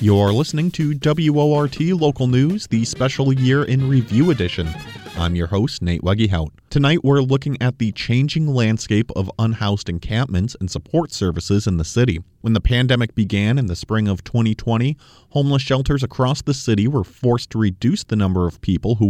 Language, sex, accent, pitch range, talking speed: English, male, American, 95-125 Hz, 175 wpm